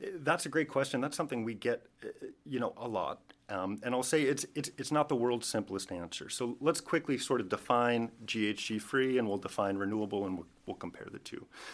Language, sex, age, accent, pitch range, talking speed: English, male, 30-49, American, 105-130 Hz, 210 wpm